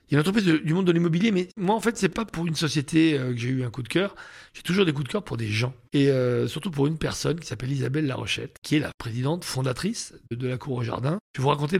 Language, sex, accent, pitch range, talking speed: French, male, French, 125-160 Hz, 315 wpm